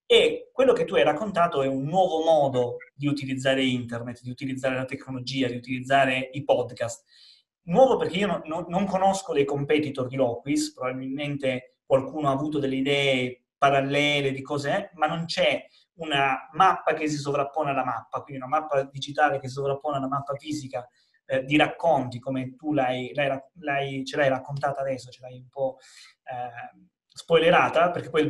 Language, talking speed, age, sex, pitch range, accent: Italian, 170 wpm, 30-49, male, 130-155 Hz, native